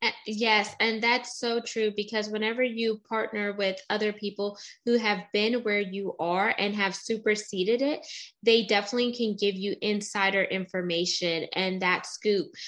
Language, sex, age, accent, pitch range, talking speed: English, female, 10-29, American, 195-225 Hz, 150 wpm